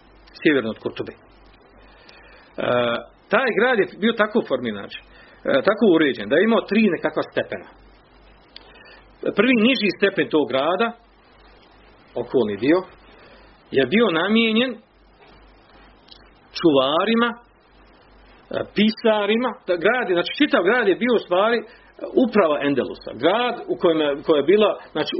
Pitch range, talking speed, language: 140-225 Hz, 120 wpm, Croatian